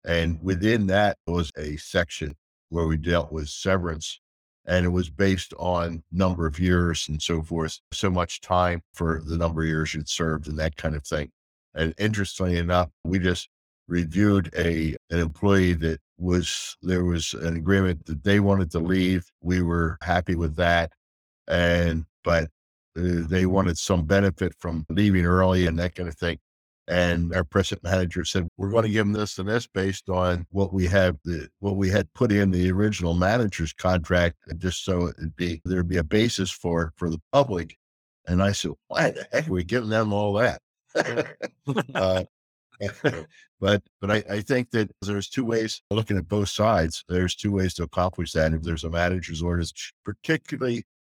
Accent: American